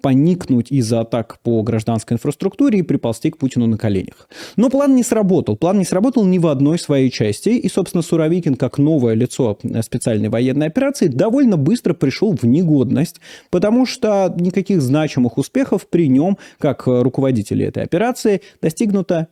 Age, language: 30-49, Russian